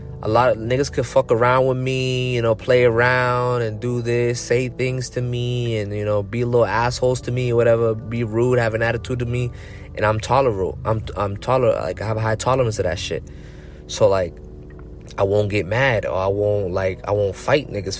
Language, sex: English, male